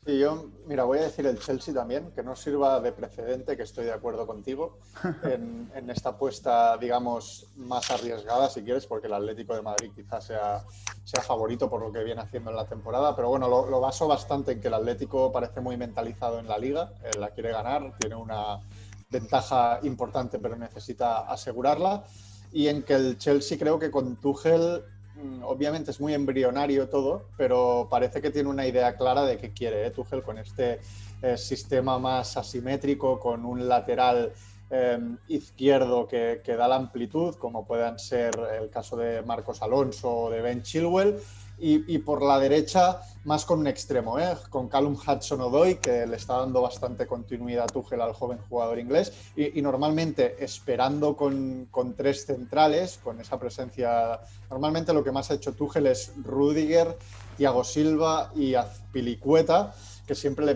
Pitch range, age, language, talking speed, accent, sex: 115-140 Hz, 30-49, Spanish, 175 wpm, Spanish, male